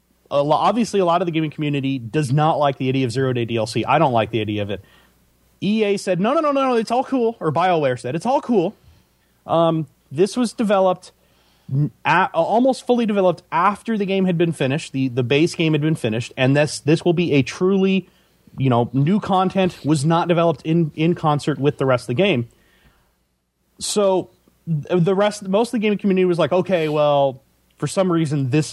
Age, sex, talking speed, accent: 30-49, male, 210 wpm, American